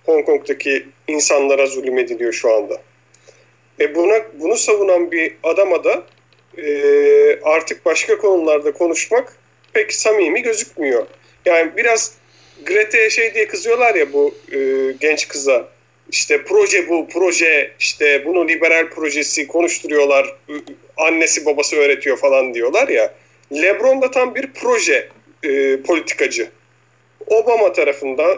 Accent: native